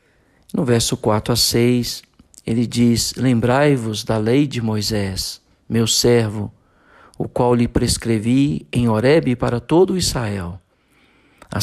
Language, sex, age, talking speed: Portuguese, male, 50-69, 125 wpm